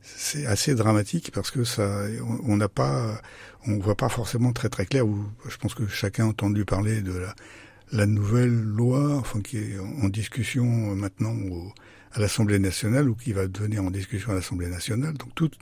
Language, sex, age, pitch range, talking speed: French, male, 60-79, 100-125 Hz, 190 wpm